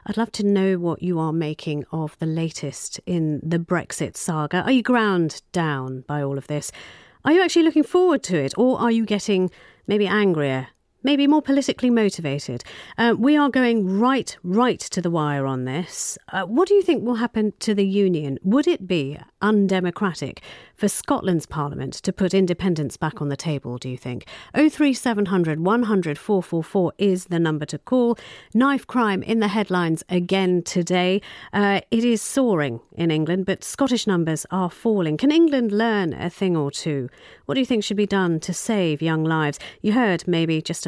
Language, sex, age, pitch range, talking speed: English, female, 40-59, 160-225 Hz, 195 wpm